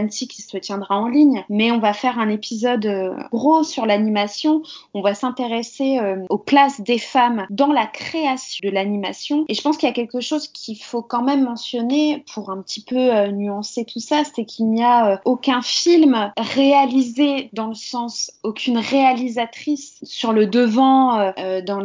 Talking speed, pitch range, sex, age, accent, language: 170 wpm, 205-255 Hz, female, 20-39, French, French